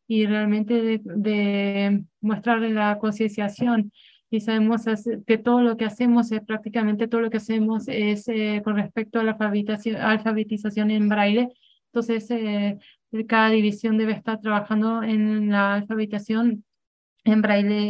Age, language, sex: 20-39, English, female